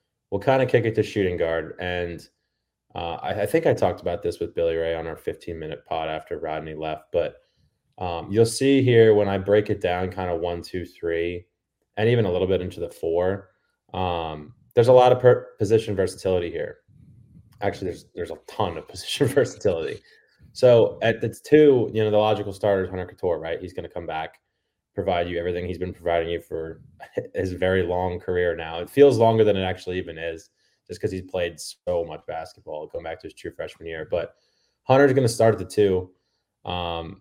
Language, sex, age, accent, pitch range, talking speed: English, male, 20-39, American, 85-115 Hz, 205 wpm